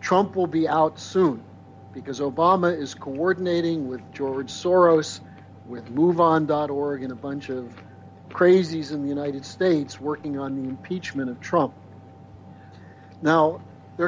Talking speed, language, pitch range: 130 wpm, English, 110-175 Hz